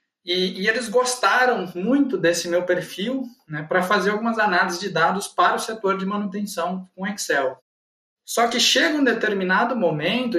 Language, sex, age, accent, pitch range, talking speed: Portuguese, male, 20-39, Brazilian, 170-230 Hz, 160 wpm